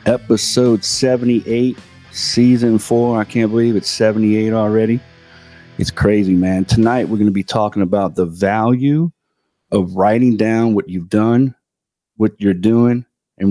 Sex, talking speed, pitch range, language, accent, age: male, 140 wpm, 95-115 Hz, English, American, 30-49